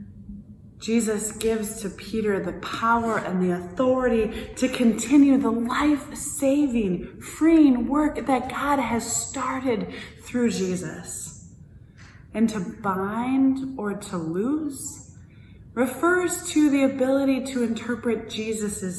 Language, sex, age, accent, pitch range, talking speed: English, female, 20-39, American, 195-275 Hz, 110 wpm